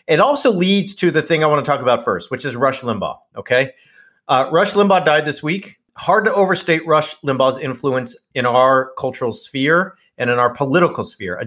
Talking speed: 205 wpm